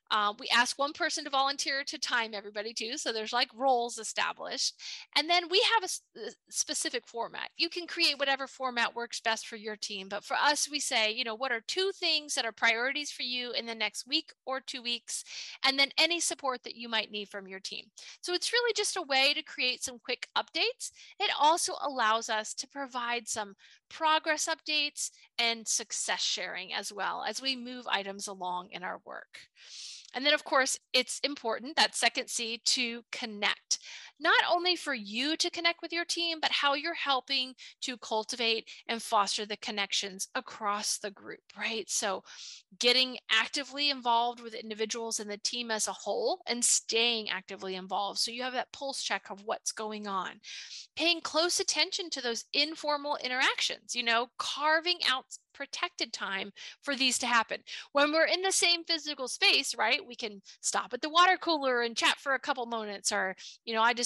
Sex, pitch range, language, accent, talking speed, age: female, 225-305 Hz, English, American, 190 wpm, 30-49